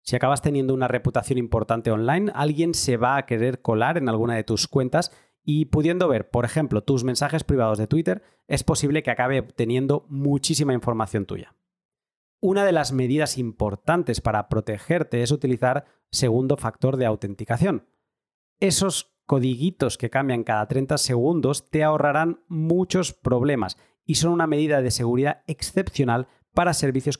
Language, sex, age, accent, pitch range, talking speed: Spanish, male, 30-49, Spanish, 120-150 Hz, 150 wpm